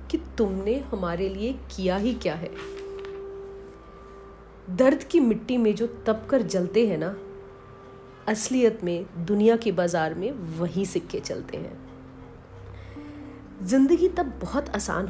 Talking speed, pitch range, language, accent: 125 wpm, 180-235 Hz, Hindi, native